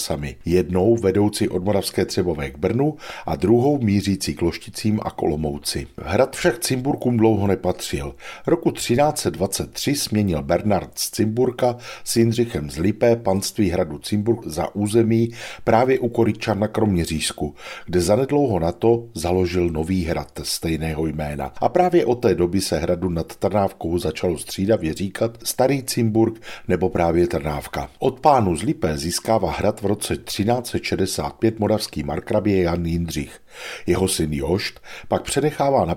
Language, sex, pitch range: Czech, male, 85-115 Hz